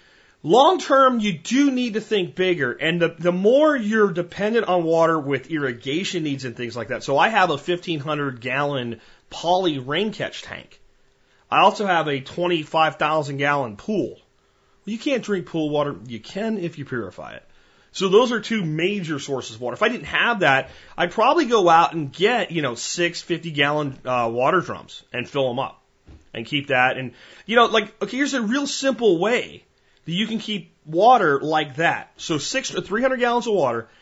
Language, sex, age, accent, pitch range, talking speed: English, male, 30-49, American, 140-195 Hz, 185 wpm